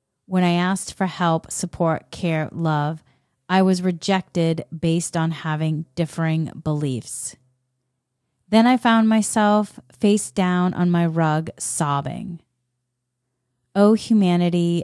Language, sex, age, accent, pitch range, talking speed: English, female, 30-49, American, 135-200 Hz, 115 wpm